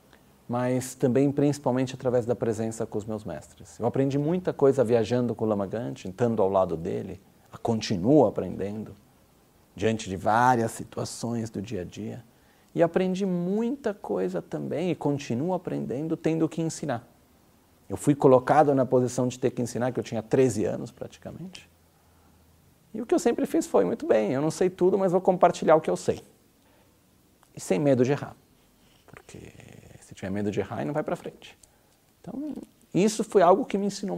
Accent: Brazilian